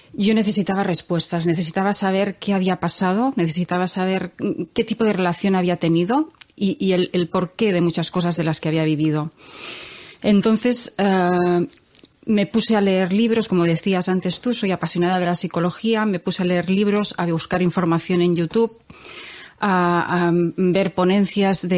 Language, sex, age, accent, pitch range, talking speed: Spanish, female, 30-49, Spanish, 175-215 Hz, 160 wpm